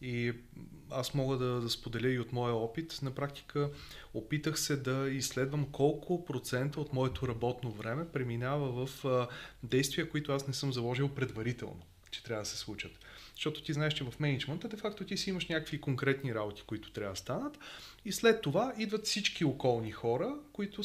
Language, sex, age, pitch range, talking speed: Bulgarian, male, 30-49, 115-155 Hz, 175 wpm